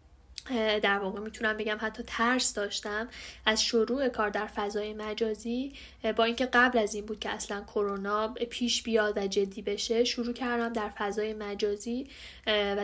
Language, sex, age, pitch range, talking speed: Persian, female, 10-29, 210-240 Hz, 155 wpm